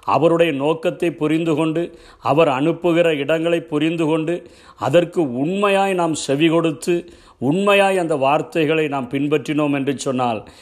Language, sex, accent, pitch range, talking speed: Tamil, male, native, 135-170 Hz, 120 wpm